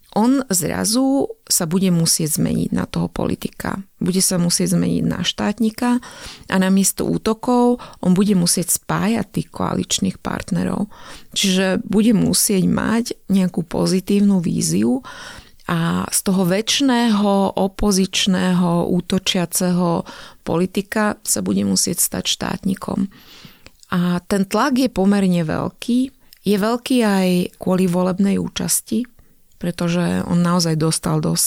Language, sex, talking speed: Slovak, female, 115 wpm